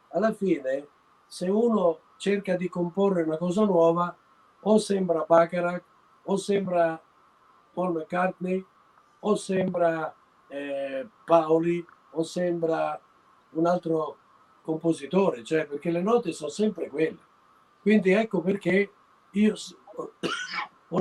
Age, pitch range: 50-69, 155-195 Hz